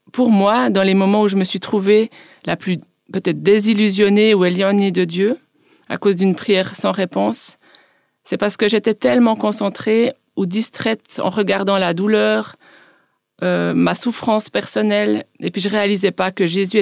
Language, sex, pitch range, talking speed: French, female, 185-220 Hz, 170 wpm